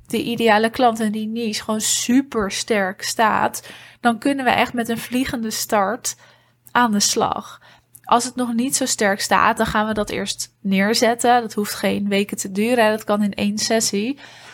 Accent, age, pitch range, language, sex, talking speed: Dutch, 20-39, 210-235 Hz, Dutch, female, 185 wpm